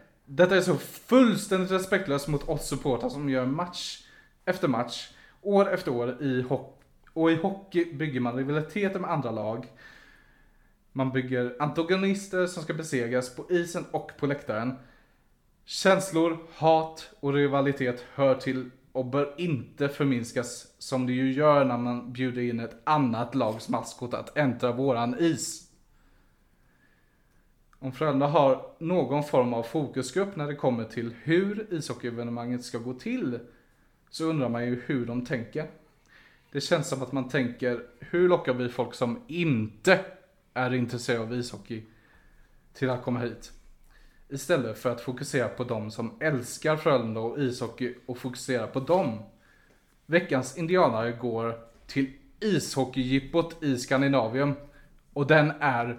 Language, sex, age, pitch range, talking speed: Swedish, male, 20-39, 125-160 Hz, 140 wpm